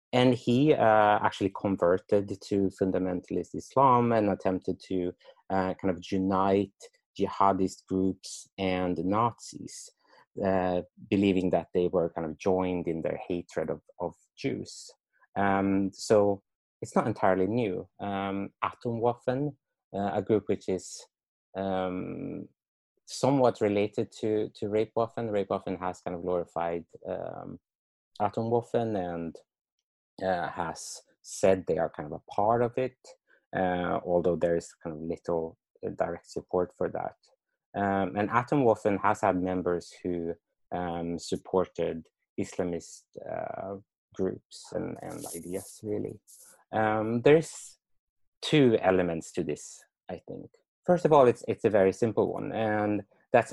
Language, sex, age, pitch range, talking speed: English, male, 30-49, 90-110 Hz, 135 wpm